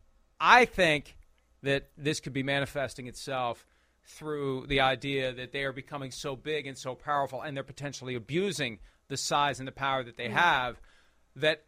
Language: English